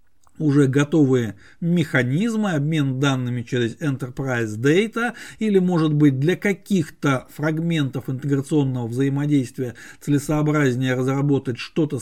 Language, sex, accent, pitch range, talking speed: Russian, male, native, 135-175 Hz, 95 wpm